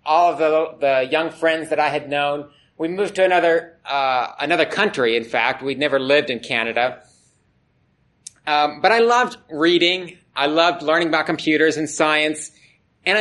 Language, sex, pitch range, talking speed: English, male, 155-200 Hz, 170 wpm